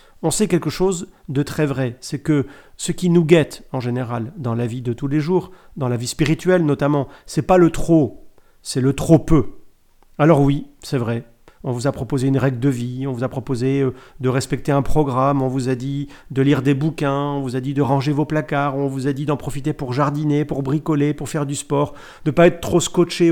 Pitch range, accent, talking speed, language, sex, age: 135-175 Hz, French, 235 wpm, French, male, 40-59